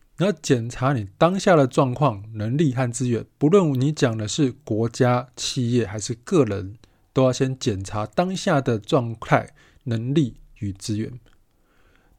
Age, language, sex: 20-39, Chinese, male